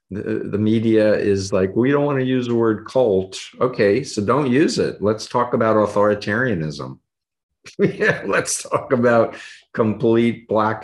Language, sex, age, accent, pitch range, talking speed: English, male, 50-69, American, 95-120 Hz, 150 wpm